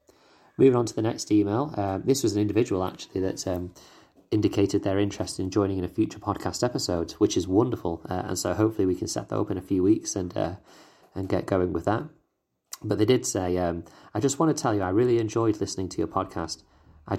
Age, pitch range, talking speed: 30-49, 90-105 Hz, 230 wpm